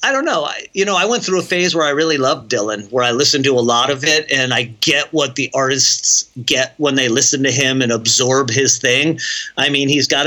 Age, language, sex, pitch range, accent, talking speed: 40-59, English, male, 130-165 Hz, American, 255 wpm